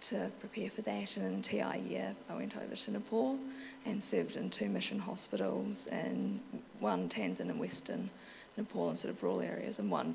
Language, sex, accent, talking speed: English, female, Australian, 190 wpm